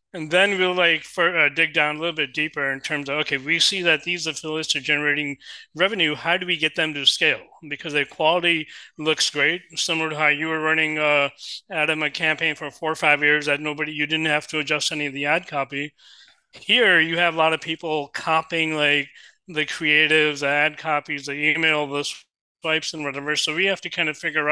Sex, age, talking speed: male, 30-49, 220 wpm